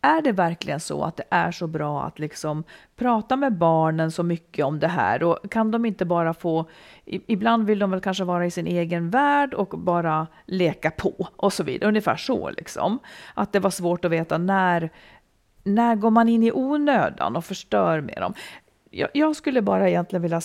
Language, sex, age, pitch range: Swedish, female, 40-59, 175-265 Hz